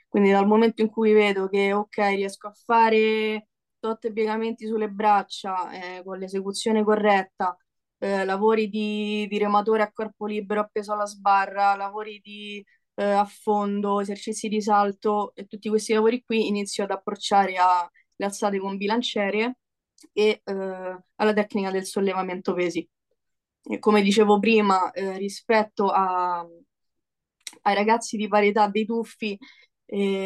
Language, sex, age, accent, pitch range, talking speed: Italian, female, 20-39, native, 190-215 Hz, 140 wpm